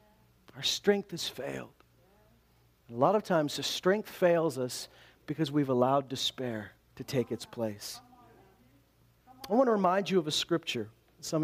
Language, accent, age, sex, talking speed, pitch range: English, American, 40-59, male, 150 wpm, 130-205 Hz